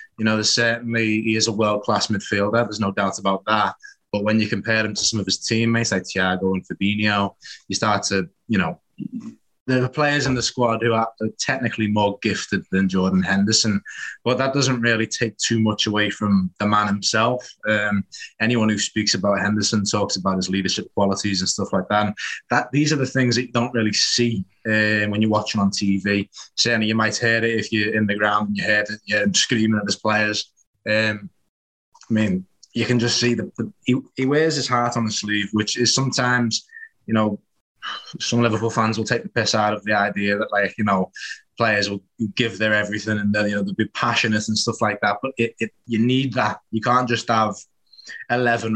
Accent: British